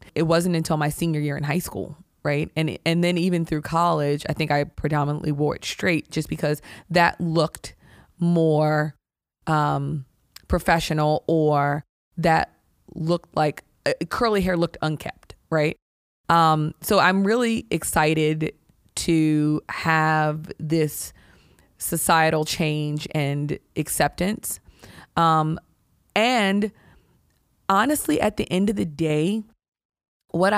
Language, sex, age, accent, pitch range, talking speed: English, female, 20-39, American, 155-185 Hz, 120 wpm